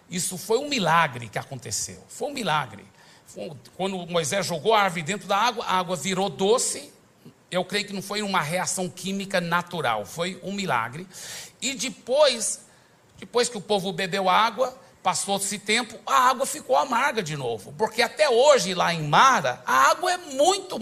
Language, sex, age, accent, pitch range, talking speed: Portuguese, male, 60-79, Brazilian, 175-240 Hz, 175 wpm